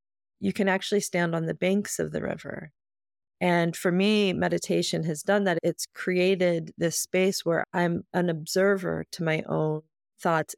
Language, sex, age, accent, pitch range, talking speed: English, female, 30-49, American, 160-190 Hz, 165 wpm